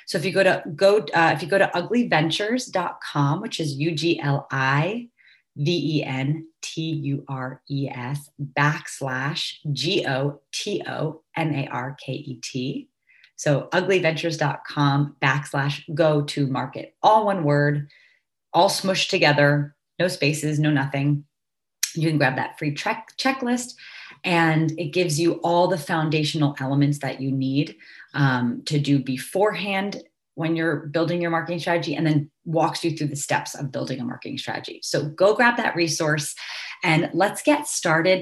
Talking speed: 160 wpm